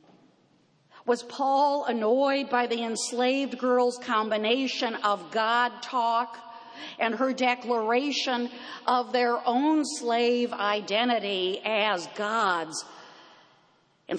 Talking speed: 95 wpm